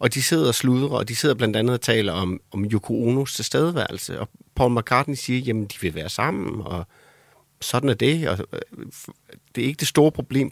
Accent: native